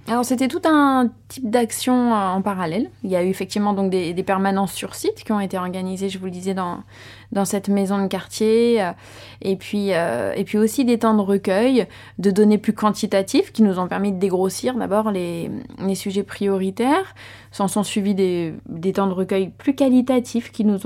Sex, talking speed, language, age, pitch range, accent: female, 200 wpm, French, 20-39, 185-230 Hz, French